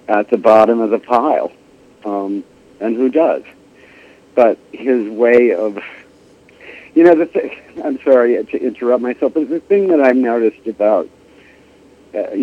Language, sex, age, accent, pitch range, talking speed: English, male, 60-79, American, 115-160 Hz, 145 wpm